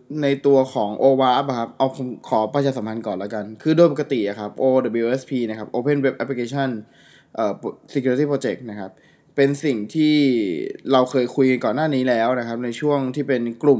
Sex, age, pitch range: male, 20-39, 115-140 Hz